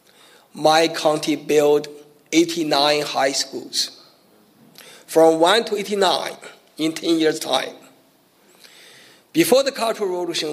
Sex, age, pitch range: male, 50-69, 150-210 Hz